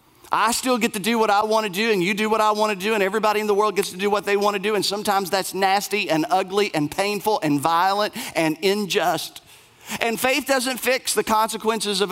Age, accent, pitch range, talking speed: 40-59, American, 185-220 Hz, 250 wpm